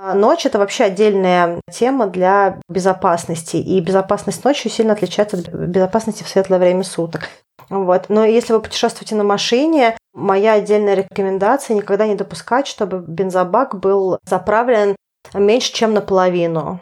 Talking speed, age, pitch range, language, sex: 130 wpm, 30-49, 195-230 Hz, Russian, female